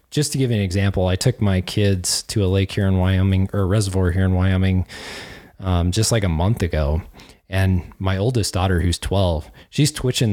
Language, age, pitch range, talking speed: English, 20-39, 90-105 Hz, 205 wpm